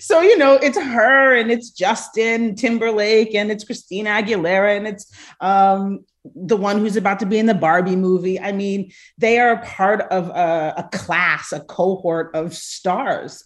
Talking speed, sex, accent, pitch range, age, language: 180 wpm, female, American, 175-225 Hz, 30-49, English